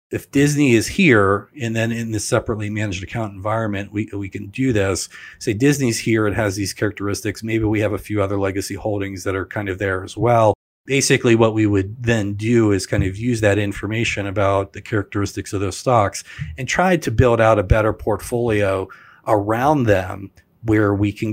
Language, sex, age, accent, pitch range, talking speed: English, male, 40-59, American, 100-115 Hz, 195 wpm